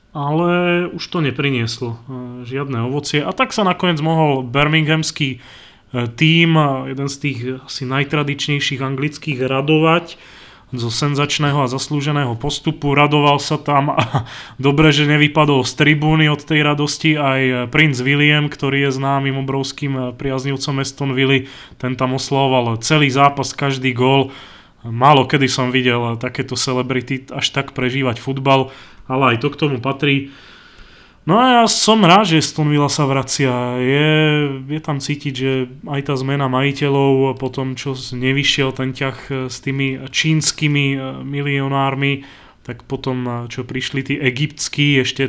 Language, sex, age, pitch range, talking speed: Slovak, male, 20-39, 130-145 Hz, 135 wpm